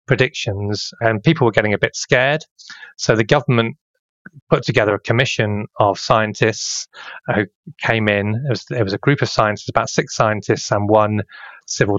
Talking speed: 165 wpm